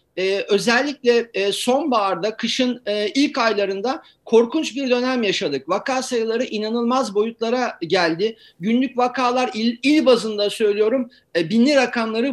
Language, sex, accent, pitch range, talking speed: Turkish, male, native, 210-260 Hz, 120 wpm